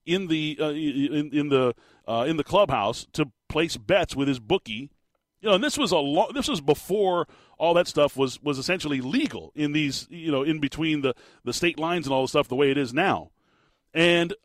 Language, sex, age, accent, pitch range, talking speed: English, male, 40-59, American, 135-175 Hz, 220 wpm